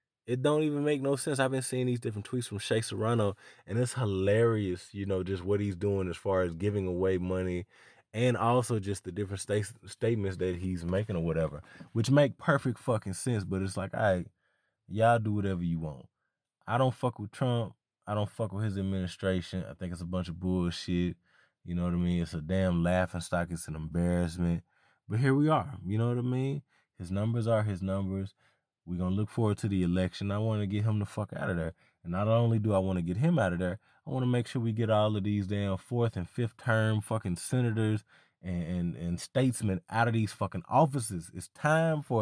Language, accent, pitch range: English, American, 95-125 Hz